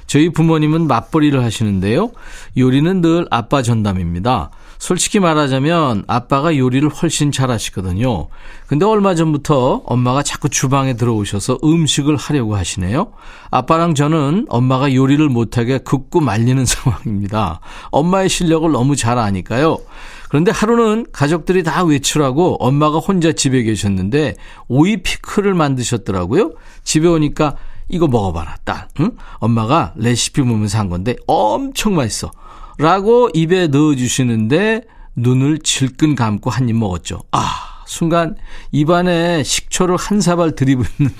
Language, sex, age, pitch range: Korean, male, 40-59, 115-160 Hz